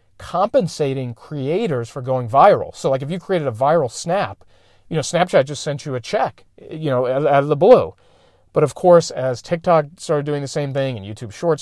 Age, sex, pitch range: 40-59, male, 110-145 Hz